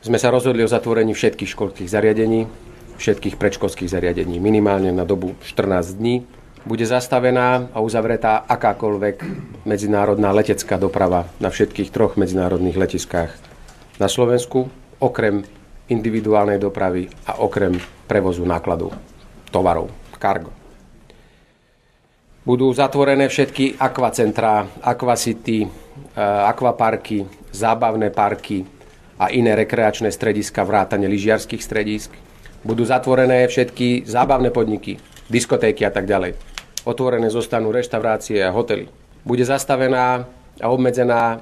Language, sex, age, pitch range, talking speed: Slovak, male, 40-59, 105-125 Hz, 105 wpm